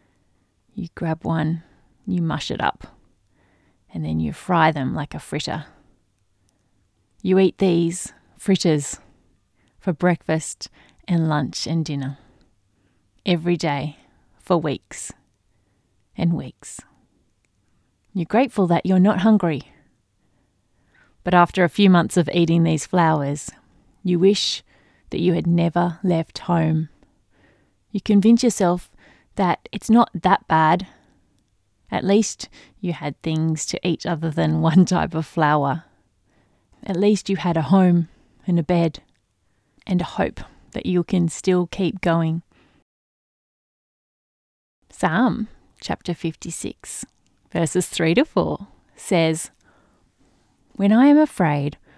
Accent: Australian